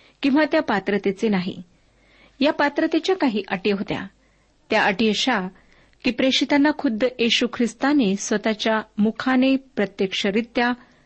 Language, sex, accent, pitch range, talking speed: Marathi, female, native, 200-265 Hz, 115 wpm